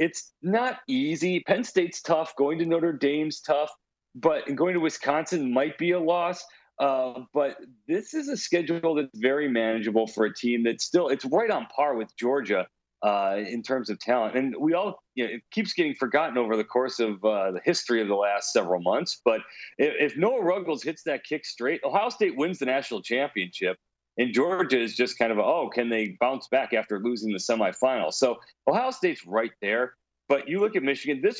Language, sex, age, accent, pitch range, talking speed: English, male, 40-59, American, 115-170 Hz, 205 wpm